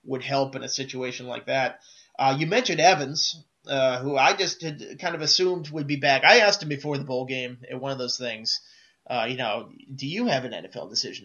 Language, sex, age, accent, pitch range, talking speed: English, male, 30-49, American, 130-150 Hz, 230 wpm